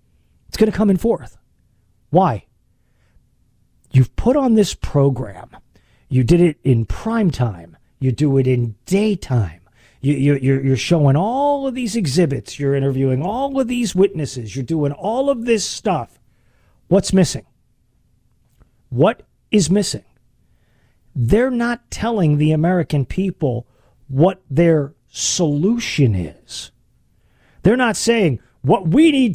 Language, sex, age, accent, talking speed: English, male, 40-59, American, 130 wpm